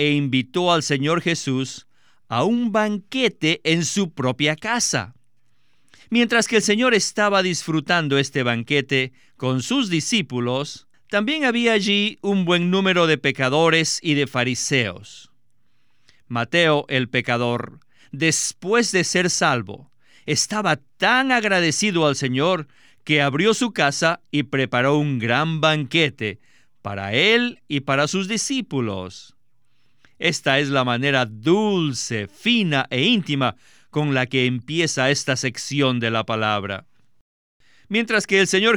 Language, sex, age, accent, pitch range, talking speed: Spanish, male, 50-69, Mexican, 130-185 Hz, 125 wpm